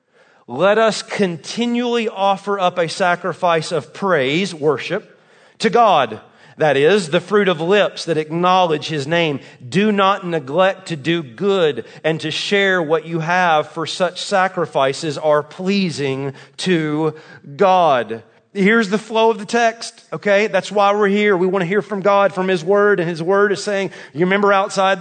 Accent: American